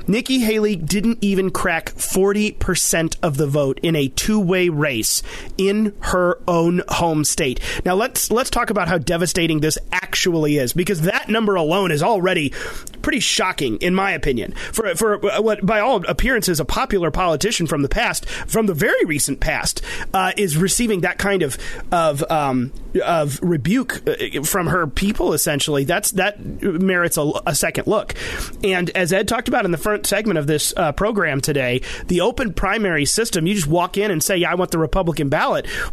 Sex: male